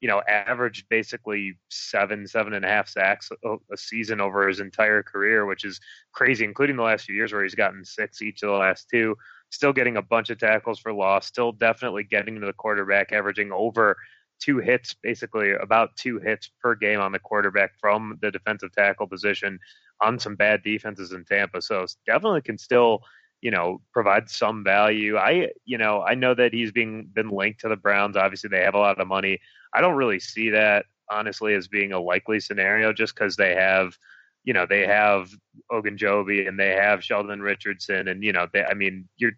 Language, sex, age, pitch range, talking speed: English, male, 20-39, 100-110 Hz, 205 wpm